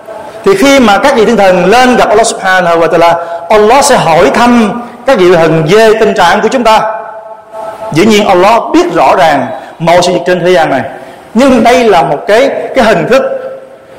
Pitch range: 200-255 Hz